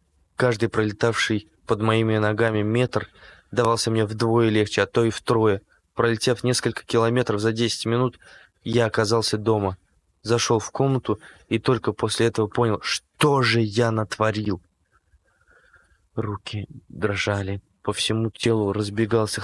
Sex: male